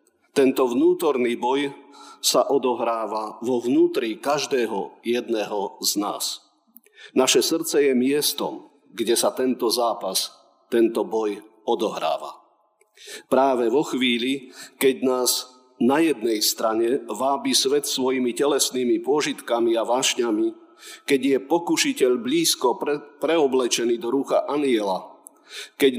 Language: Slovak